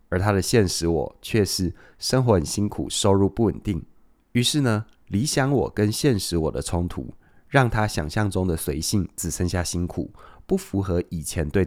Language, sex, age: Chinese, male, 20-39